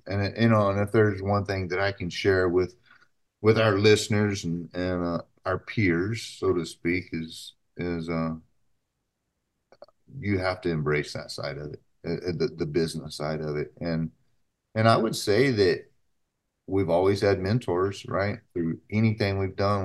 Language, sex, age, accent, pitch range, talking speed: English, male, 40-59, American, 85-105 Hz, 170 wpm